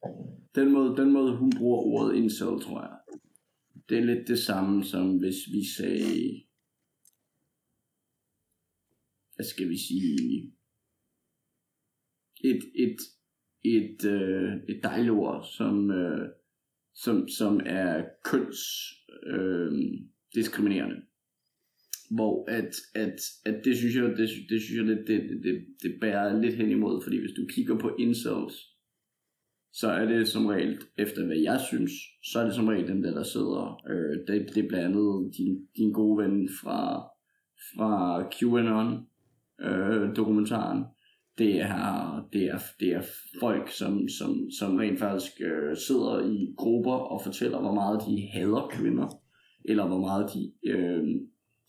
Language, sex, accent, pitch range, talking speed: Danish, male, native, 100-120 Hz, 135 wpm